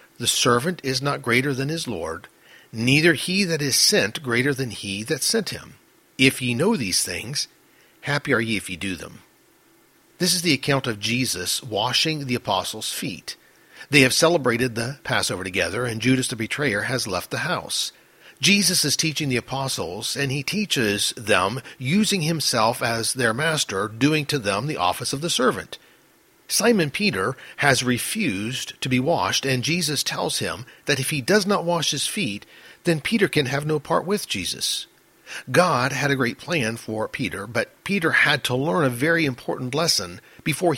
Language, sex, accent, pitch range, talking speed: English, male, American, 115-160 Hz, 180 wpm